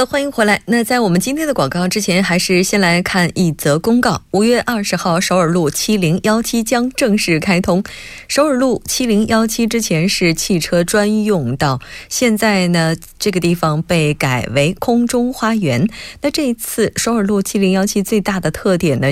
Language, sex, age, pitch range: Korean, female, 20-39, 160-215 Hz